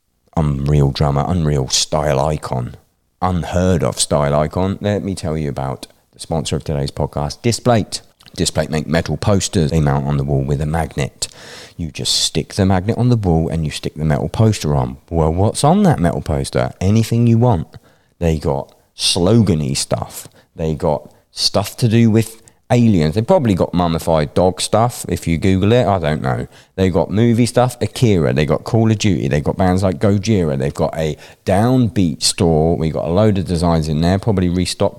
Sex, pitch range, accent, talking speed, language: male, 80-120 Hz, British, 190 wpm, English